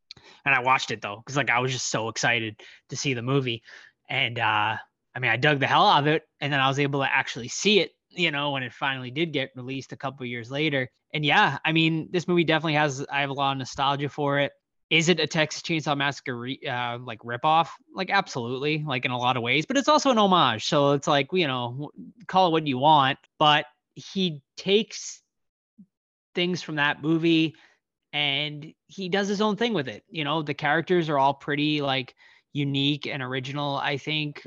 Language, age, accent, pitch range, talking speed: English, 20-39, American, 130-155 Hz, 220 wpm